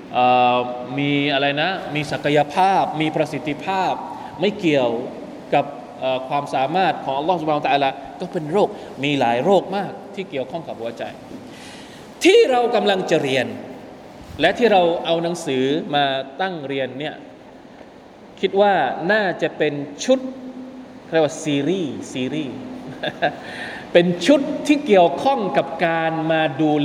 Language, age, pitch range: Thai, 20-39, 140-205 Hz